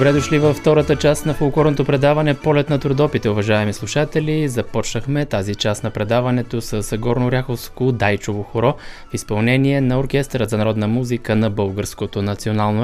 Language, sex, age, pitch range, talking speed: Bulgarian, male, 20-39, 110-130 Hz, 150 wpm